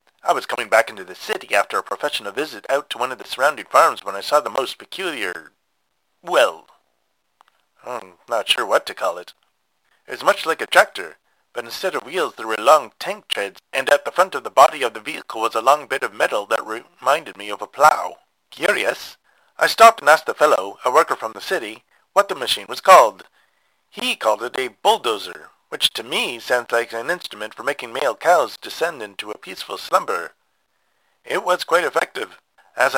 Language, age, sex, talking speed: English, 30-49, male, 205 wpm